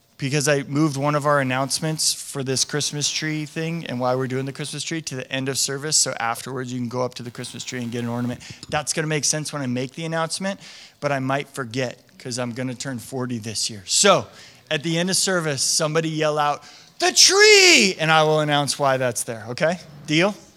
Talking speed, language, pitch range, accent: 230 wpm, English, 150-215 Hz, American